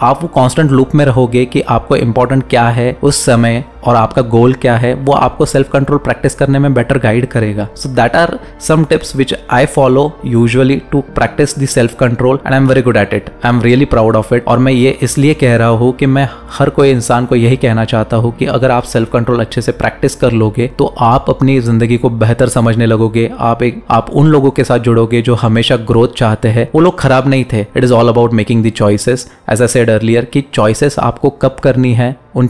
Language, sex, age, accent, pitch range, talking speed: Hindi, male, 20-39, native, 115-140 Hz, 230 wpm